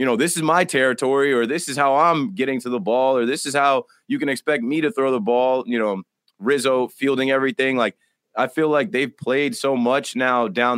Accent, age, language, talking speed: American, 20-39, English, 235 wpm